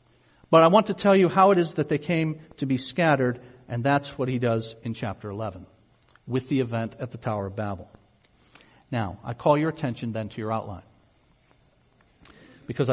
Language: English